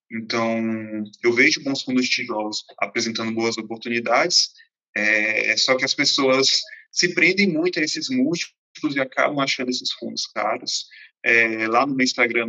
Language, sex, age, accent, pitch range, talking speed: Portuguese, male, 20-39, Brazilian, 115-135 Hz, 155 wpm